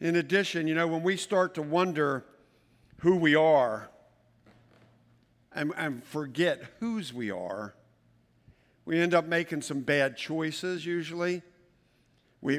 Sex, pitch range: male, 125-170 Hz